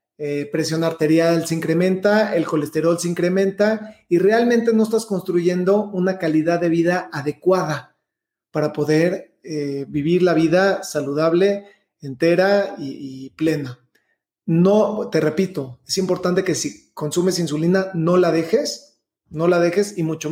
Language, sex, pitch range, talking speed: Spanish, male, 160-195 Hz, 140 wpm